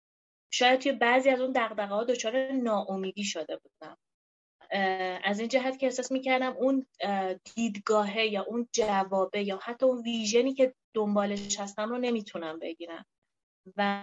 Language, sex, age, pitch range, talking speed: Persian, female, 30-49, 200-265 Hz, 135 wpm